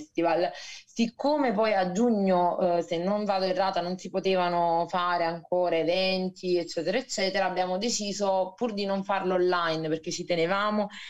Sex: female